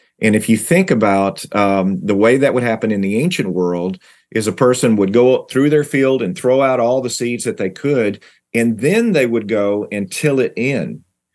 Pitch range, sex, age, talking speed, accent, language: 95-120 Hz, male, 40-59, 215 wpm, American, English